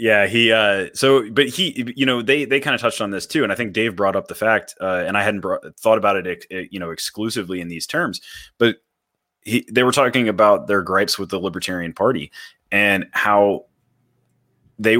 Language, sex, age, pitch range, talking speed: English, male, 20-39, 95-115 Hz, 215 wpm